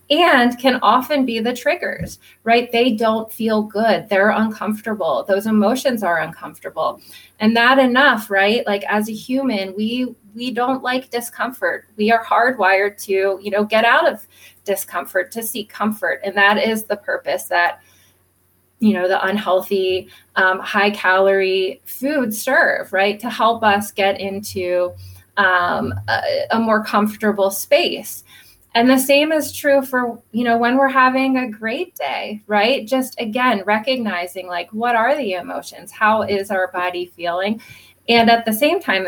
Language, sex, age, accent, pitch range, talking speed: English, female, 20-39, American, 200-255 Hz, 160 wpm